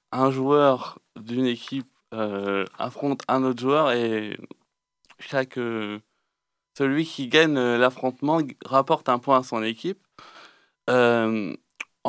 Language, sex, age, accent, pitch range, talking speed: French, male, 20-39, French, 120-150 Hz, 115 wpm